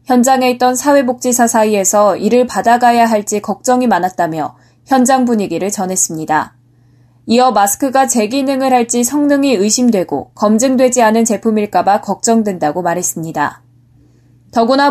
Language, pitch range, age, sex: Korean, 185-265 Hz, 20-39, female